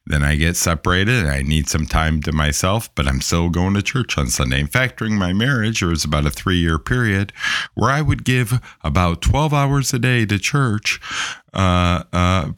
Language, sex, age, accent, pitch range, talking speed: English, male, 50-69, American, 75-110 Hz, 205 wpm